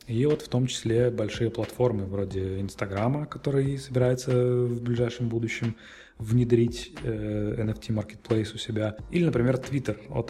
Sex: male